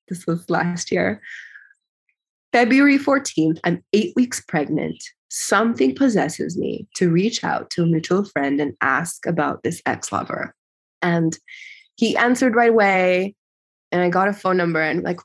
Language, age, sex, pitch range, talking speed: English, 20-39, female, 170-230 Hz, 150 wpm